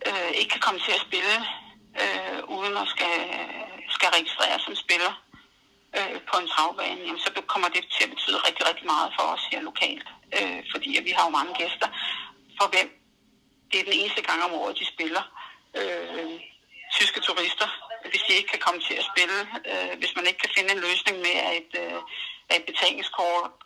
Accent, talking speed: native, 190 wpm